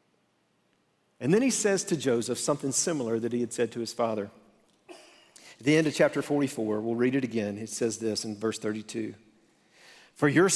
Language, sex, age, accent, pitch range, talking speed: English, male, 50-69, American, 115-145 Hz, 190 wpm